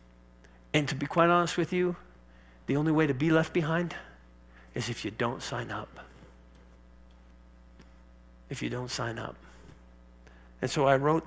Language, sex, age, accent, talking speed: English, male, 50-69, American, 155 wpm